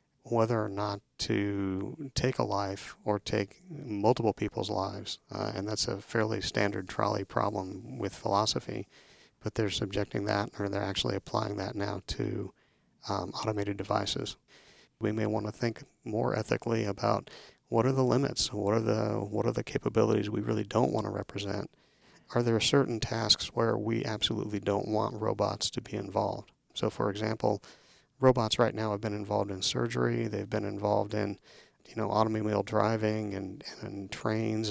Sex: male